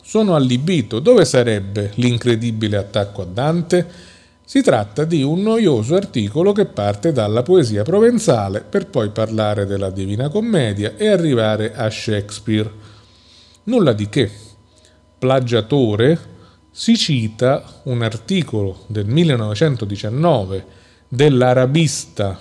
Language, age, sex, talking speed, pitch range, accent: Italian, 40-59, male, 105 wpm, 105-155 Hz, native